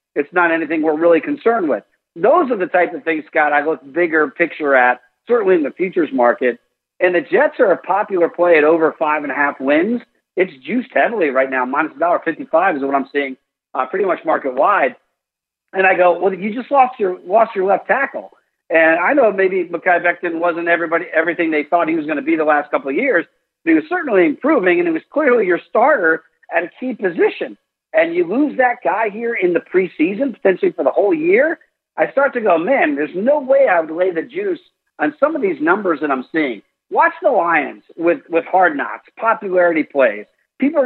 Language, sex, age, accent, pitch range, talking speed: English, male, 50-69, American, 160-270 Hz, 215 wpm